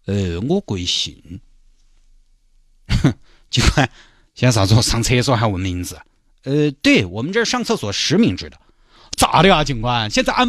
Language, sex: Chinese, male